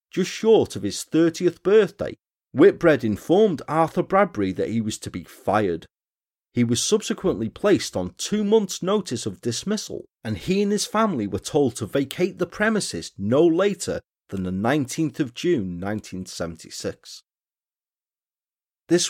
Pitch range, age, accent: 105-180 Hz, 30-49, British